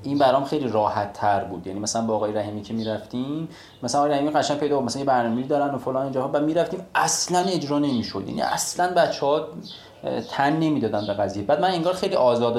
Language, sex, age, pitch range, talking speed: Persian, male, 30-49, 115-155 Hz, 195 wpm